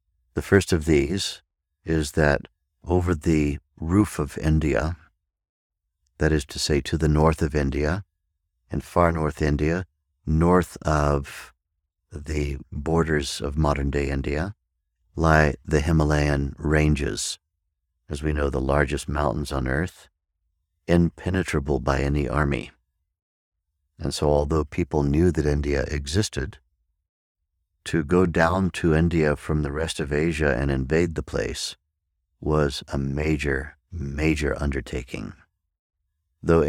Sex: male